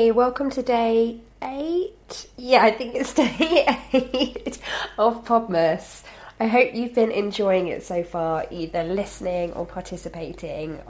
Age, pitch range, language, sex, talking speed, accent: 20-39, 170-235 Hz, English, female, 130 wpm, British